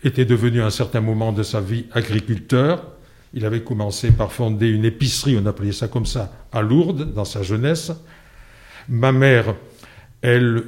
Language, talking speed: French, 170 wpm